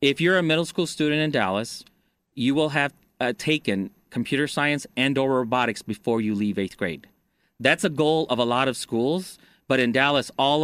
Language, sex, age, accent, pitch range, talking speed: English, male, 30-49, American, 110-140 Hz, 195 wpm